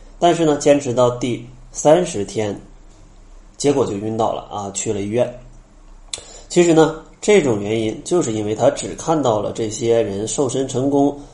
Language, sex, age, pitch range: Chinese, male, 20-39, 110-155 Hz